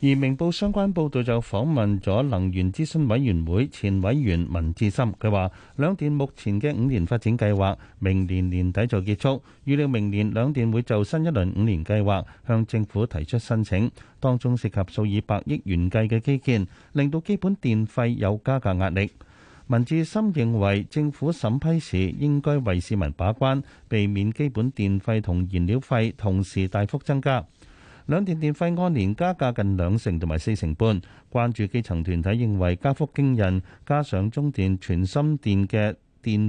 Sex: male